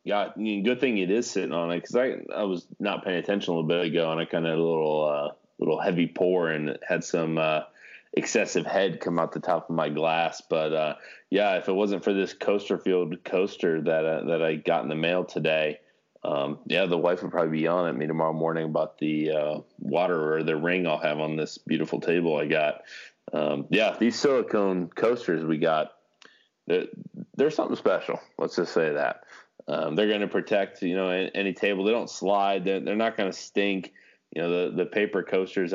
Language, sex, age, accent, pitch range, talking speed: English, male, 20-39, American, 80-95 Hz, 220 wpm